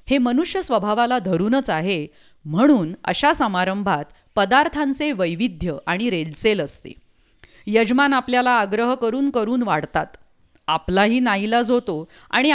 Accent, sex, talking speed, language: Indian, female, 120 wpm, English